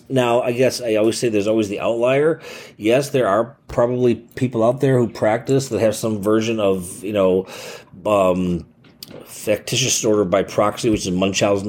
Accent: American